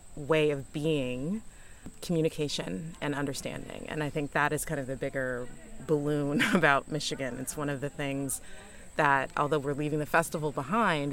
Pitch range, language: 140-155 Hz, English